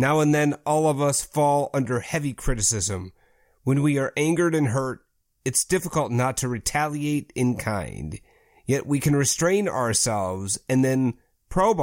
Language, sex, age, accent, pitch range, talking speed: English, male, 30-49, American, 110-145 Hz, 155 wpm